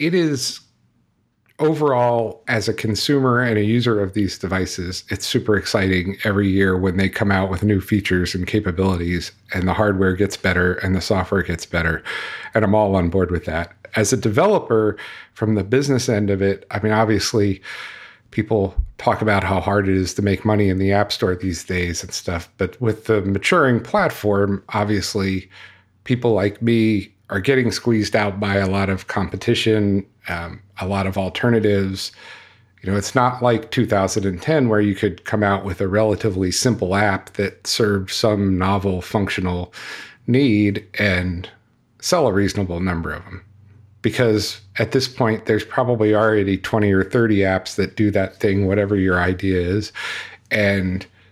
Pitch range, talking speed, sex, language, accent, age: 95-110 Hz, 170 wpm, male, English, American, 40-59